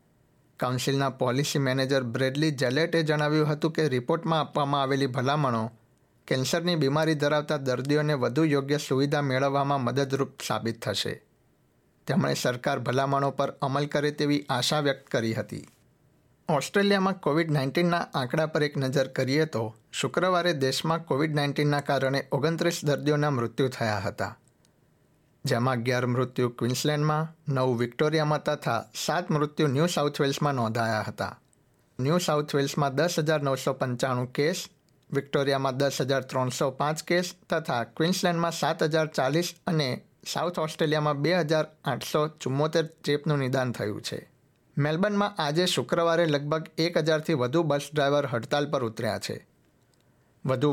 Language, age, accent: Gujarati, 60-79, native